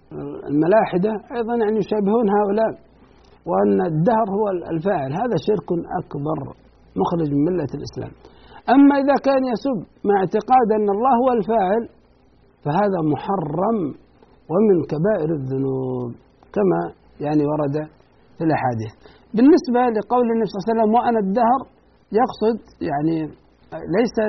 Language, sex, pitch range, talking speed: Arabic, male, 160-230 Hz, 120 wpm